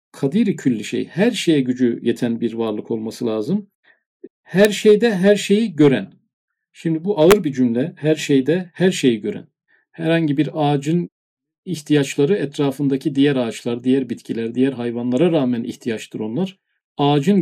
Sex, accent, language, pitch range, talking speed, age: male, native, Turkish, 125-170 Hz, 140 wpm, 50-69